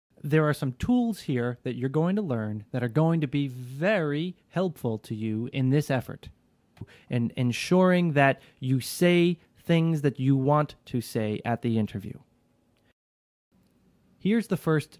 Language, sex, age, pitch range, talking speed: English, male, 30-49, 120-160 Hz, 155 wpm